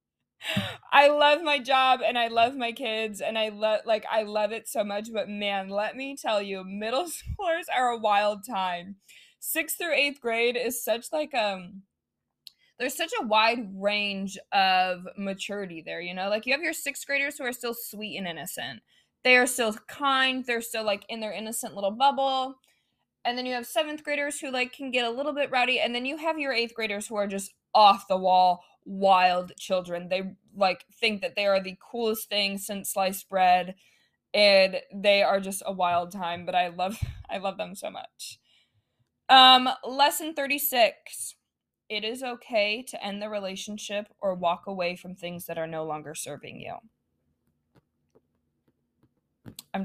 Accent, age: American, 20-39